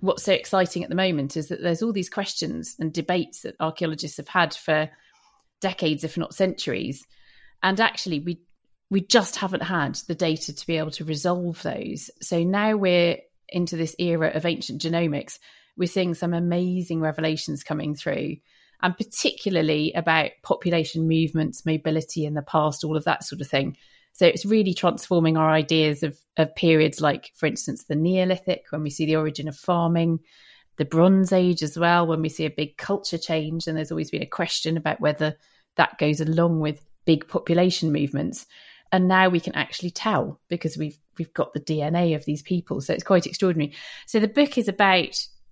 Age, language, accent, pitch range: 30-49, English, British, 155-180 Hz